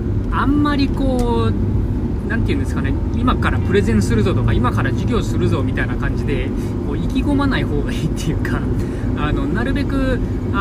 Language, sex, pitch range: Japanese, male, 105-120 Hz